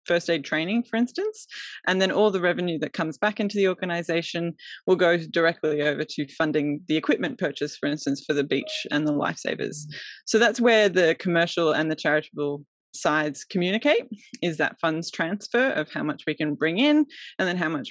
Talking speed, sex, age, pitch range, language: 195 wpm, female, 20-39, 155-225 Hz, English